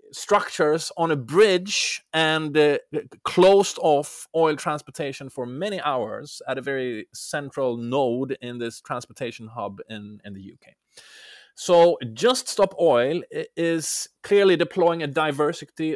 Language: English